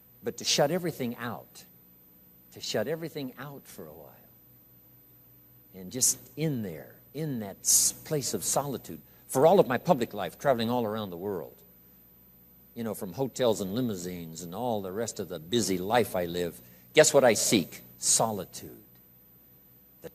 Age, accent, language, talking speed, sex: 60-79, American, English, 160 wpm, male